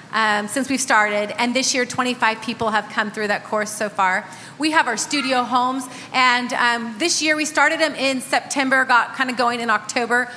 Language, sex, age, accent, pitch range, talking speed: English, female, 30-49, American, 215-260 Hz, 210 wpm